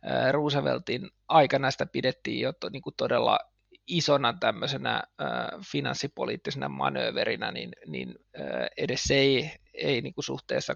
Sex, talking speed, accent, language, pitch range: male, 85 wpm, native, Finnish, 145-175 Hz